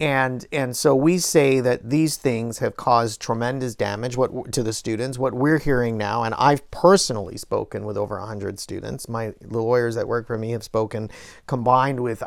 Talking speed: 190 wpm